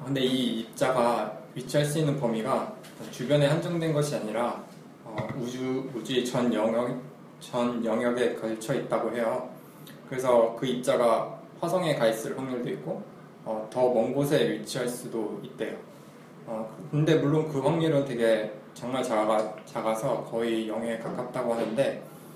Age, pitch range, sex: 20-39, 115-145 Hz, male